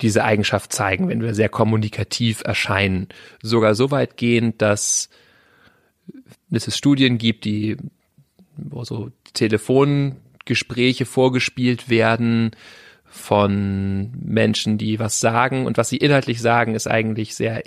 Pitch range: 110-125 Hz